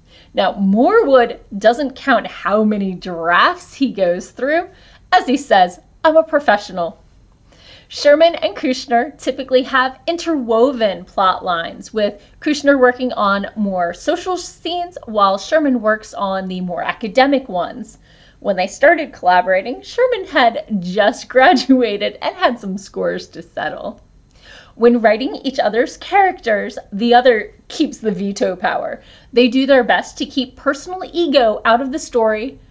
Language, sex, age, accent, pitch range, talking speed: English, female, 30-49, American, 210-300 Hz, 140 wpm